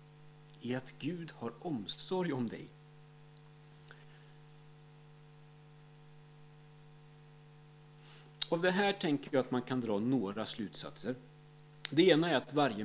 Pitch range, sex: 145-155 Hz, male